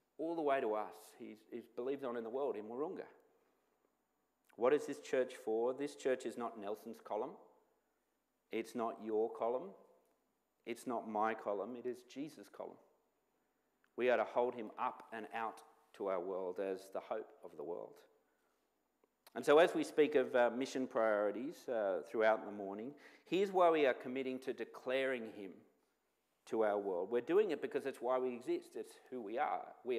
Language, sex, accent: English, male, Australian